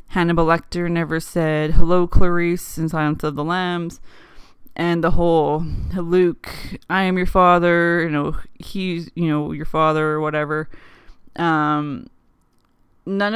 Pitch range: 155-175 Hz